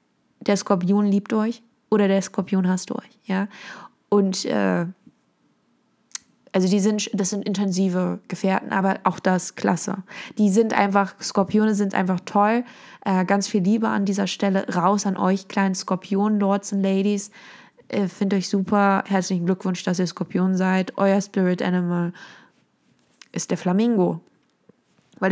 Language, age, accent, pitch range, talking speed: German, 20-39, German, 190-230 Hz, 145 wpm